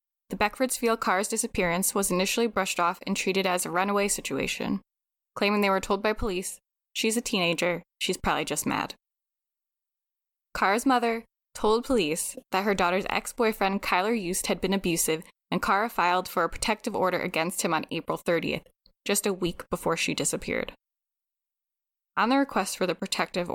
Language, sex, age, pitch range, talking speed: English, female, 10-29, 180-215 Hz, 165 wpm